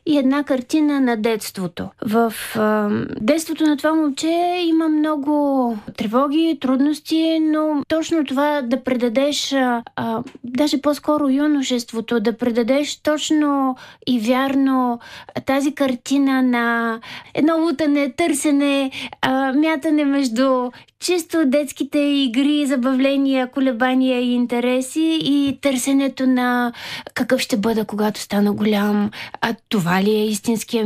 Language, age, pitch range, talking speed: Bulgarian, 20-39, 235-290 Hz, 115 wpm